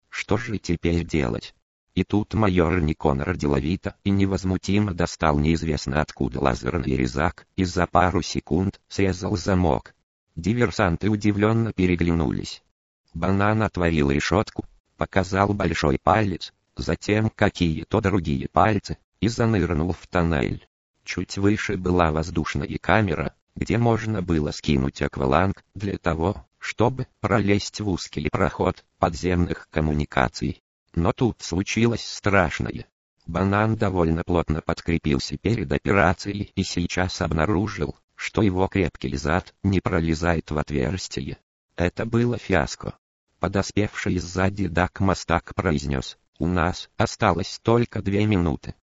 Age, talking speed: 50-69, 115 wpm